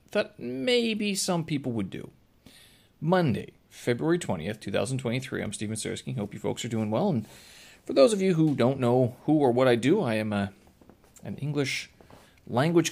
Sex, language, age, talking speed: male, English, 30-49, 170 wpm